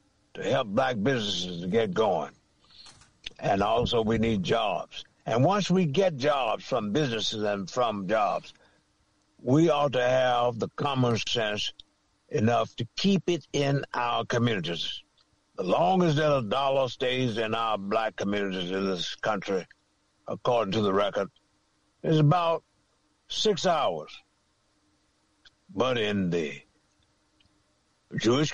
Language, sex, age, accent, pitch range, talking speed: English, male, 60-79, American, 100-145 Hz, 130 wpm